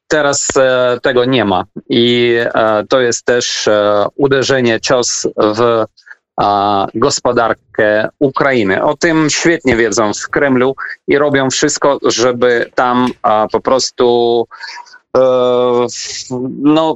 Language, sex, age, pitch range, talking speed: Polish, male, 30-49, 115-135 Hz, 115 wpm